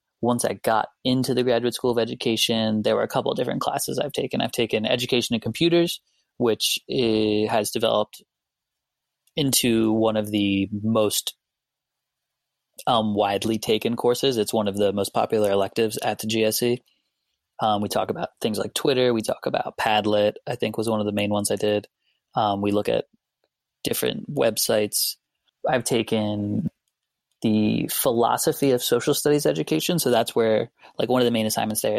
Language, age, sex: English, 20-39, male